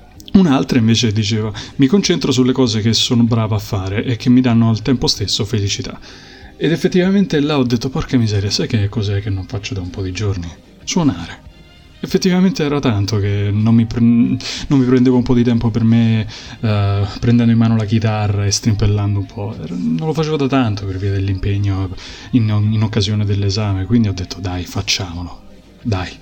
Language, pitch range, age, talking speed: Italian, 100-125 Hz, 20-39, 185 wpm